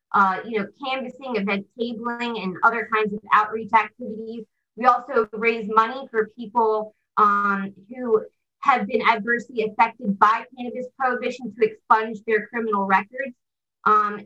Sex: female